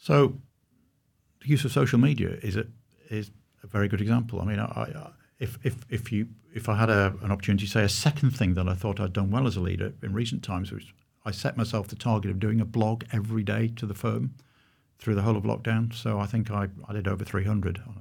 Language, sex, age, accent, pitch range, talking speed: English, male, 50-69, British, 100-125 Hz, 245 wpm